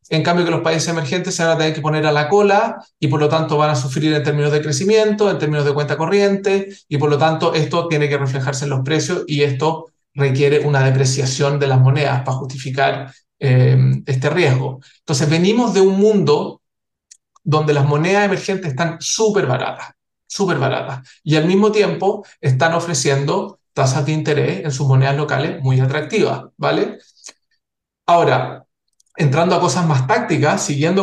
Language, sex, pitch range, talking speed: Spanish, male, 140-185 Hz, 180 wpm